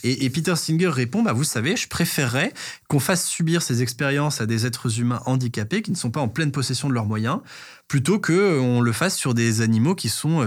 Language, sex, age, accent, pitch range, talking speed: French, male, 20-39, French, 115-145 Hz, 220 wpm